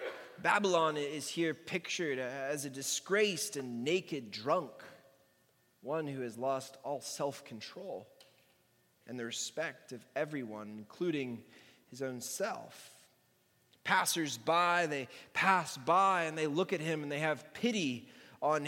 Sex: male